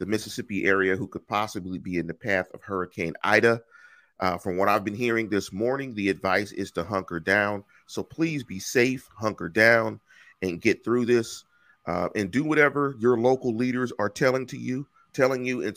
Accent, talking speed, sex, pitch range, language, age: American, 195 wpm, male, 105-125 Hz, English, 40-59